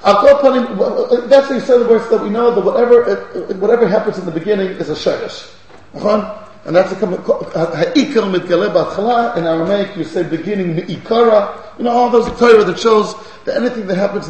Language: English